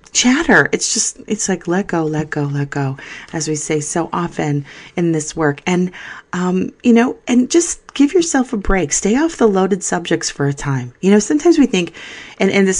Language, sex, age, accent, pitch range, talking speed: English, female, 30-49, American, 160-230 Hz, 210 wpm